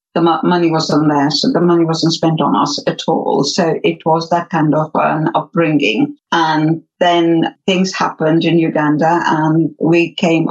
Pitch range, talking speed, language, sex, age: 160-195 Hz, 170 wpm, English, female, 60-79